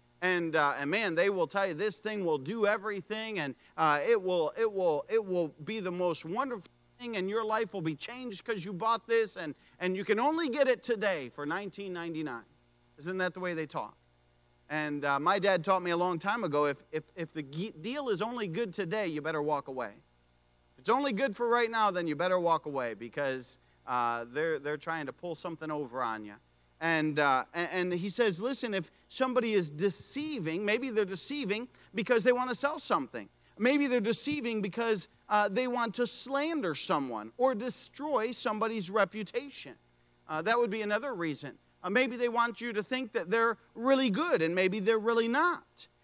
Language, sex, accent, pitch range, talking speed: English, male, American, 160-240 Hz, 200 wpm